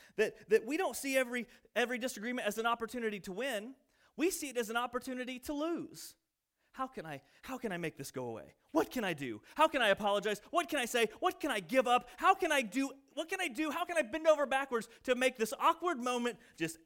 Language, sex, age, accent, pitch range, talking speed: English, male, 30-49, American, 165-255 Hz, 240 wpm